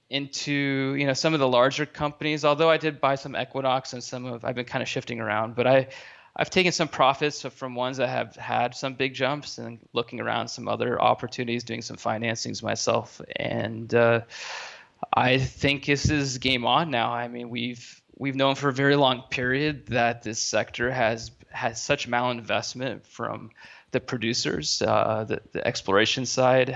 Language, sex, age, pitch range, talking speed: English, male, 20-39, 115-130 Hz, 180 wpm